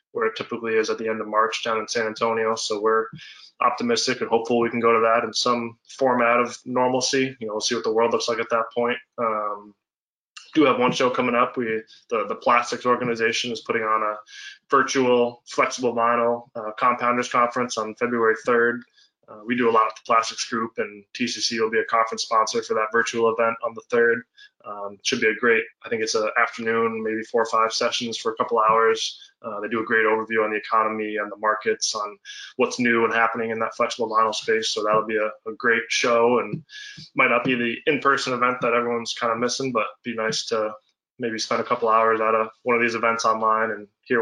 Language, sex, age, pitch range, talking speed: English, male, 20-39, 110-120 Hz, 230 wpm